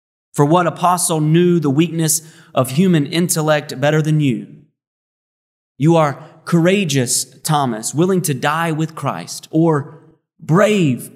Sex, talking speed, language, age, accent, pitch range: male, 125 wpm, English, 30-49, American, 130-170 Hz